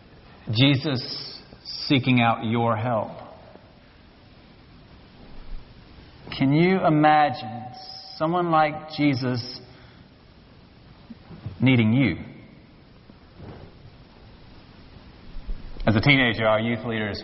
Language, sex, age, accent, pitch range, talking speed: English, male, 40-59, American, 115-150 Hz, 65 wpm